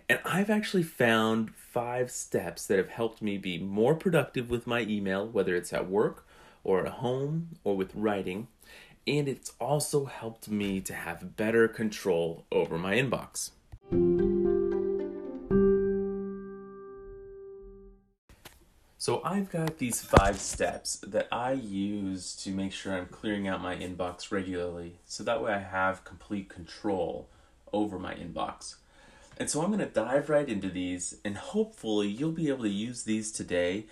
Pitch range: 95-135 Hz